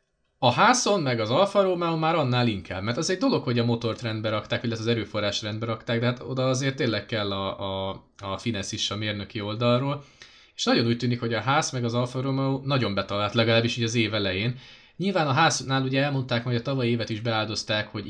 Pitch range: 110-130 Hz